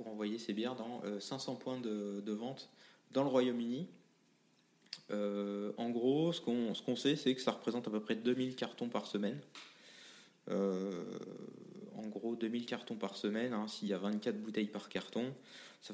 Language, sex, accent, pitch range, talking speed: French, male, French, 110-135 Hz, 175 wpm